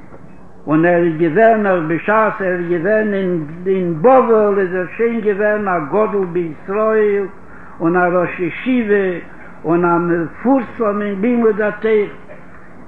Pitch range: 175-215 Hz